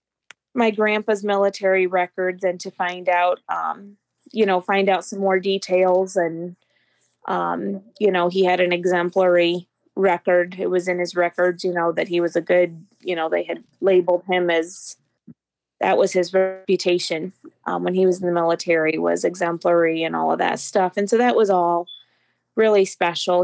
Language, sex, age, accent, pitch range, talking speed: English, female, 20-39, American, 175-195 Hz, 175 wpm